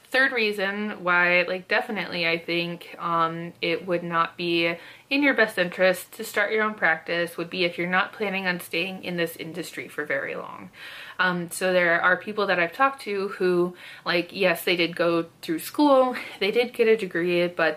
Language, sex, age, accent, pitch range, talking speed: English, female, 20-39, American, 170-215 Hz, 195 wpm